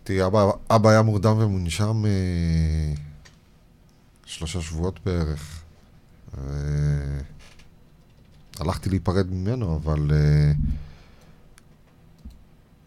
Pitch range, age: 75-90 Hz, 40-59